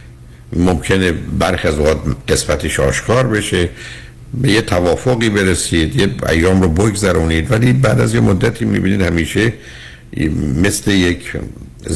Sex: male